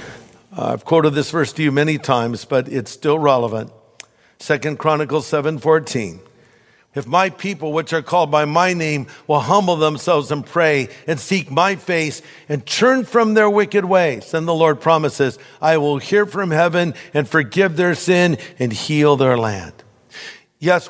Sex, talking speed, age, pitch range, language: male, 165 wpm, 50-69, 145-180 Hz, English